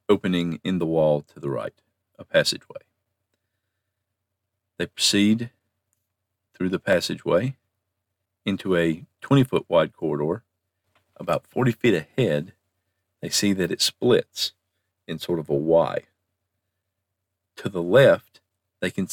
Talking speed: 115 wpm